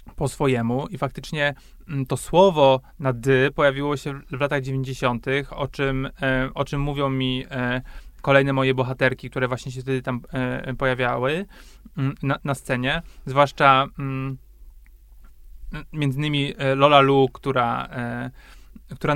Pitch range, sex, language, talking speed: 130-145 Hz, male, Polish, 115 wpm